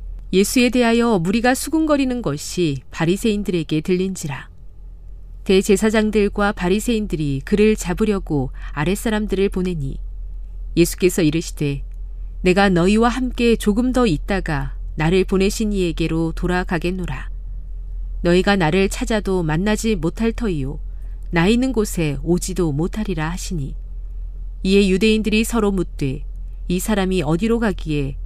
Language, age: Korean, 40-59